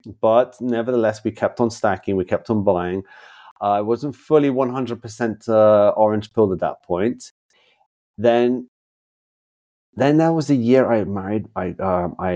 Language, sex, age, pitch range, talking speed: English, male, 30-49, 90-120 Hz, 145 wpm